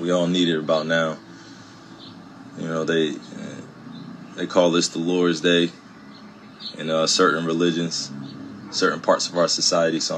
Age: 20-39